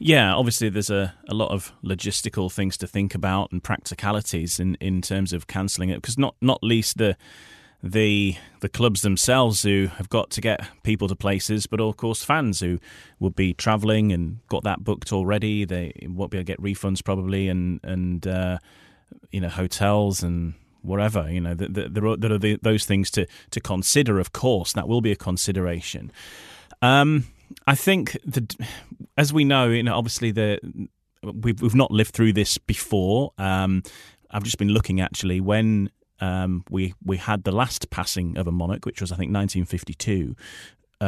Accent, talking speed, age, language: British, 185 wpm, 30-49, English